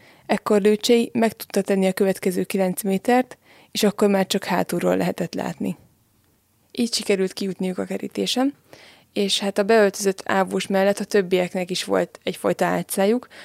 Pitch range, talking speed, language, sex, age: 180-210 Hz, 145 wpm, Hungarian, female, 20-39